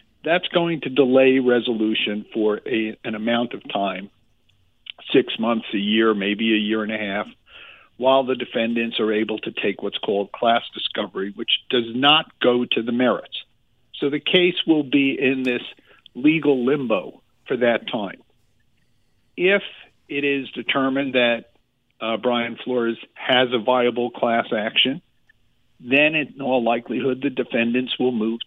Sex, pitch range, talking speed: male, 115-135 Hz, 150 wpm